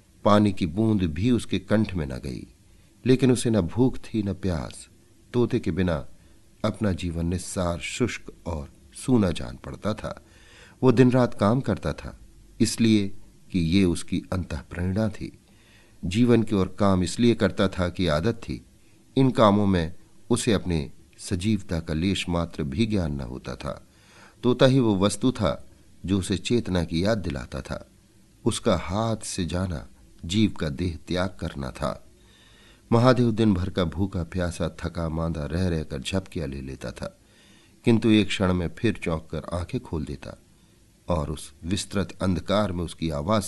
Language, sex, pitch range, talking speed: Hindi, male, 85-105 Hz, 160 wpm